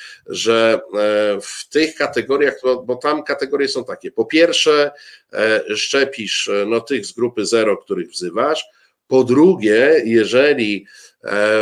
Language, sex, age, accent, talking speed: Polish, male, 50-69, native, 115 wpm